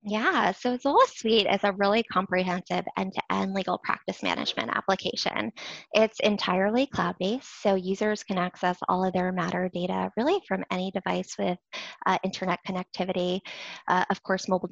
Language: English